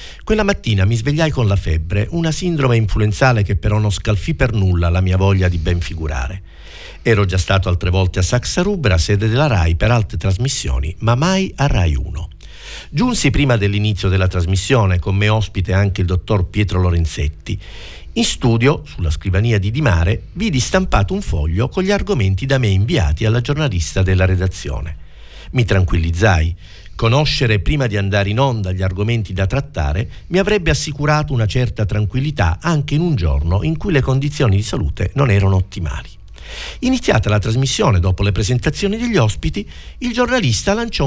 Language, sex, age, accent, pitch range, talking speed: Italian, male, 50-69, native, 90-130 Hz, 170 wpm